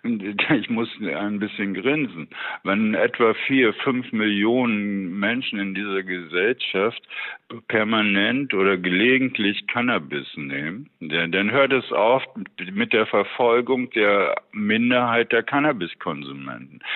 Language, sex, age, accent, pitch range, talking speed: German, male, 60-79, German, 100-130 Hz, 105 wpm